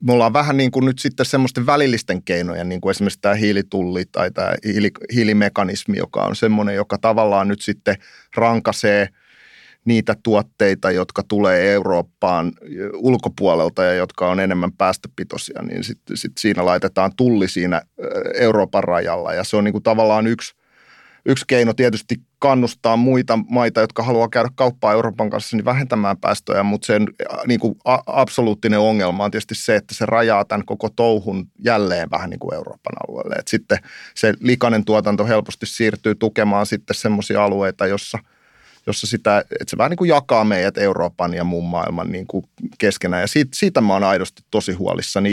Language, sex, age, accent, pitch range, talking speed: Finnish, male, 30-49, native, 100-125 Hz, 165 wpm